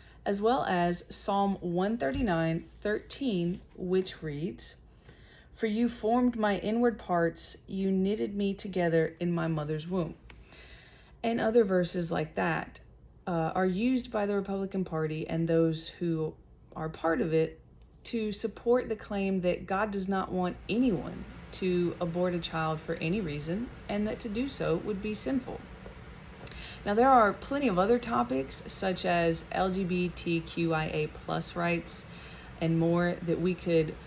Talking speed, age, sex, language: 145 wpm, 30-49, female, English